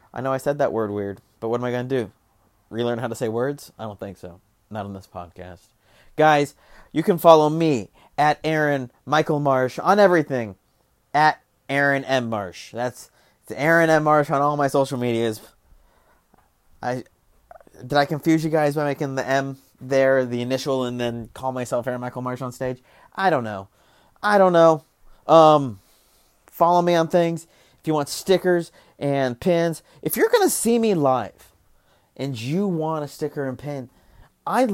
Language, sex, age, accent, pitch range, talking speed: English, male, 30-49, American, 125-170 Hz, 185 wpm